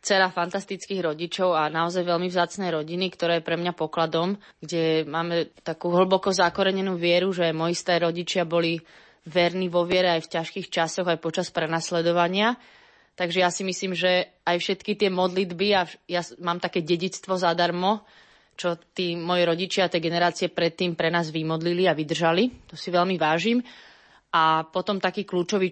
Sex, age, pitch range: female, 20-39, 165-185 Hz